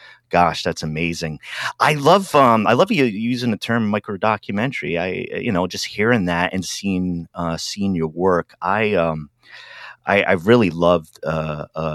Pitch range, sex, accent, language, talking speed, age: 80-105 Hz, male, American, English, 170 wpm, 30-49